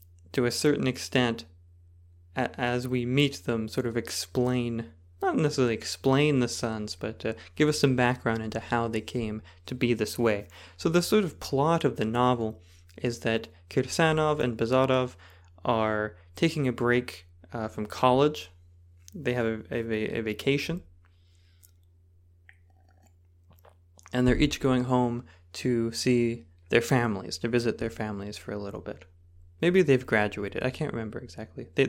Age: 20-39